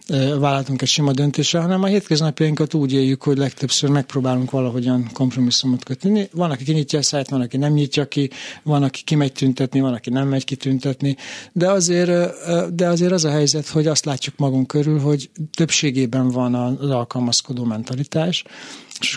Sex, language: male, Hungarian